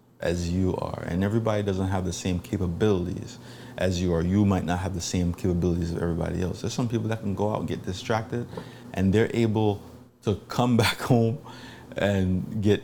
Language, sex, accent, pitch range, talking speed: English, male, American, 95-115 Hz, 195 wpm